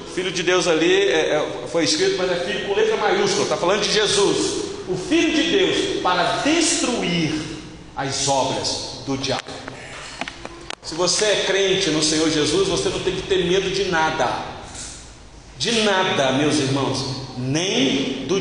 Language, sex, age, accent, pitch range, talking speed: Portuguese, male, 40-59, Brazilian, 160-255 Hz, 150 wpm